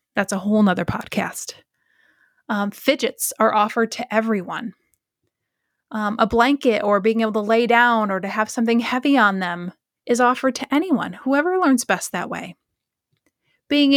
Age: 20-39